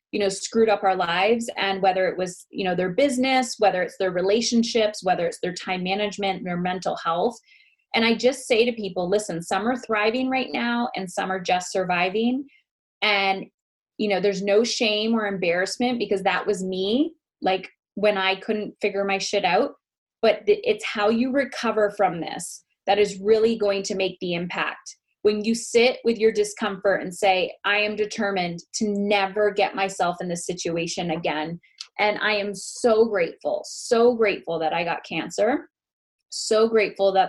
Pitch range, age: 185-225 Hz, 20-39